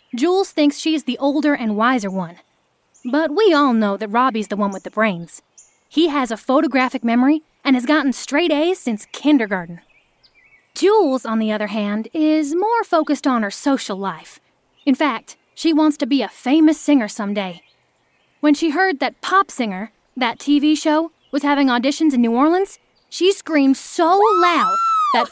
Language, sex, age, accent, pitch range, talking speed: English, female, 30-49, American, 230-315 Hz, 175 wpm